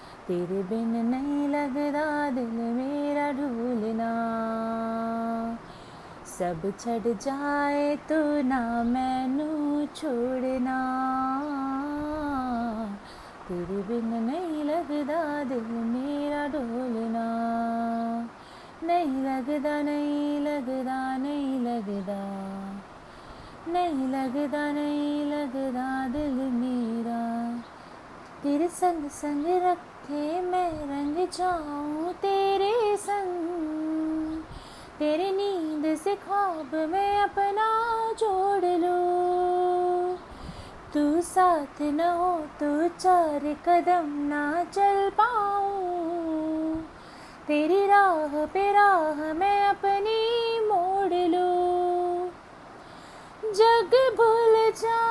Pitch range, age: 260-360 Hz, 20-39